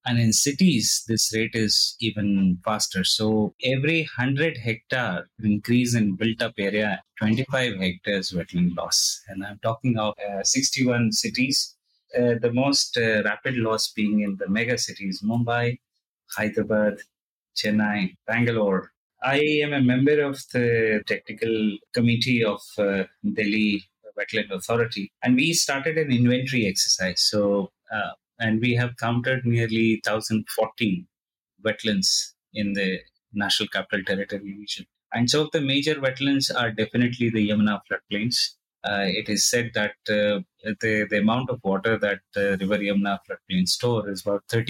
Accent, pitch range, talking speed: native, 100-120 Hz, 150 wpm